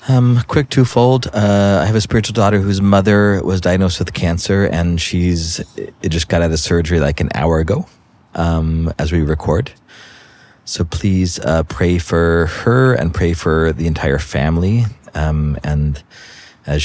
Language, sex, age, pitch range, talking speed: English, male, 30-49, 75-100 Hz, 165 wpm